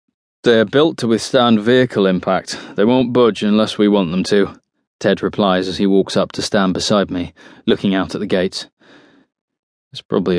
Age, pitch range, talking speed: 20-39, 95-120 Hz, 180 wpm